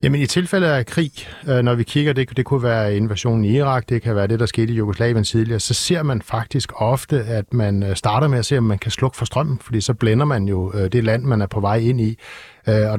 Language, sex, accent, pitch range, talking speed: Danish, male, native, 110-130 Hz, 255 wpm